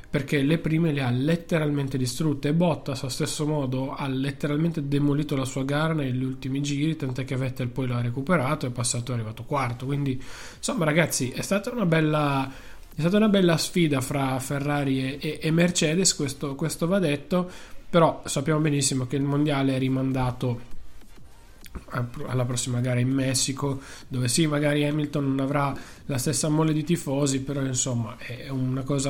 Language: Italian